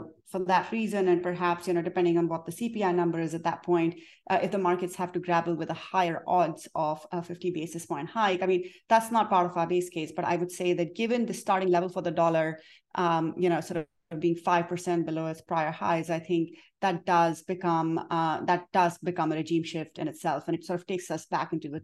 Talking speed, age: 245 wpm, 30-49